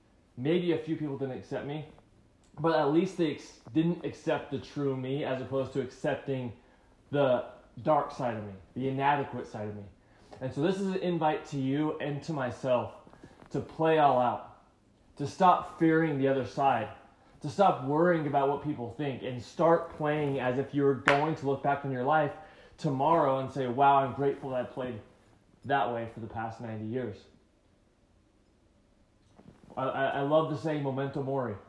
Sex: male